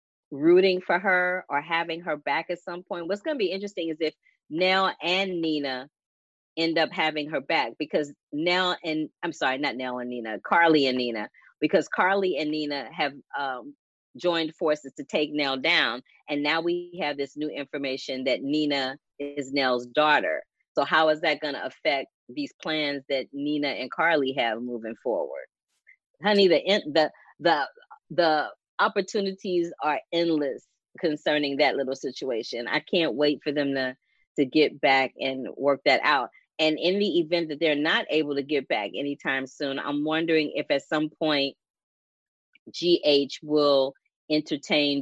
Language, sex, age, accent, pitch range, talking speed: English, female, 30-49, American, 140-165 Hz, 165 wpm